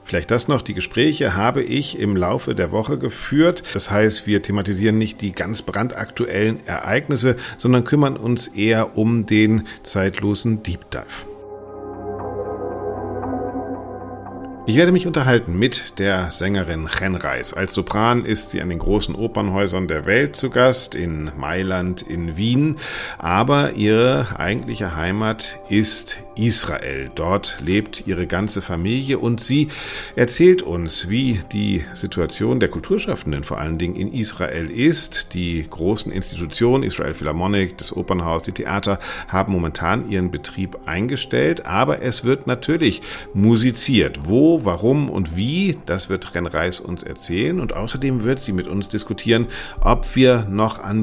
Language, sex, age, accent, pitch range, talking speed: German, male, 50-69, German, 90-120 Hz, 140 wpm